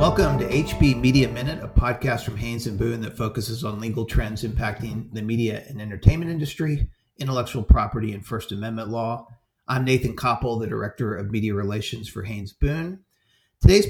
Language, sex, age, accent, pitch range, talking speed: English, male, 40-59, American, 105-130 Hz, 175 wpm